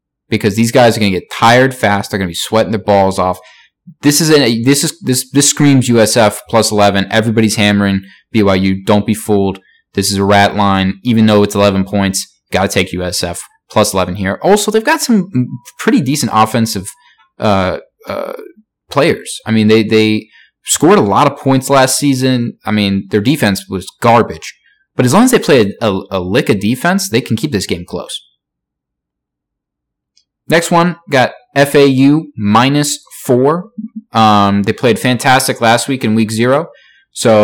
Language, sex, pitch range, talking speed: English, male, 100-140 Hz, 180 wpm